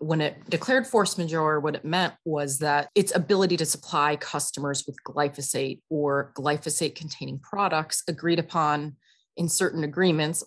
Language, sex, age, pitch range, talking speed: English, female, 30-49, 145-170 Hz, 145 wpm